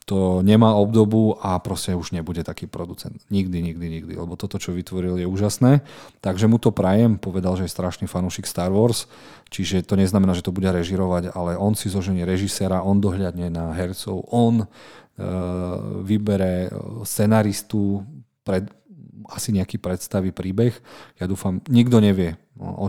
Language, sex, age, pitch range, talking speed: Slovak, male, 40-59, 90-105 Hz, 155 wpm